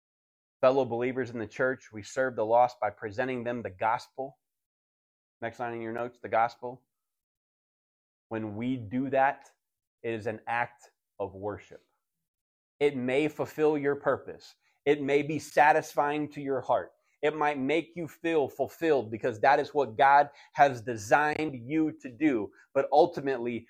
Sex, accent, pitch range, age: male, American, 120-160 Hz, 30-49